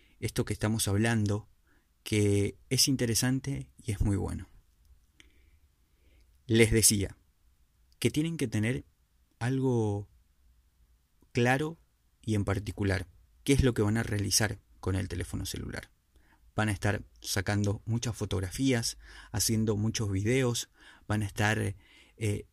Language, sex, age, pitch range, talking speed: Spanish, male, 30-49, 95-120 Hz, 125 wpm